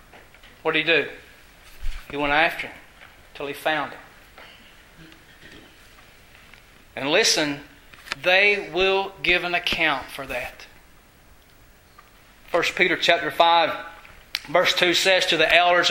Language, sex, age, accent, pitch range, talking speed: English, male, 40-59, American, 155-210 Hz, 115 wpm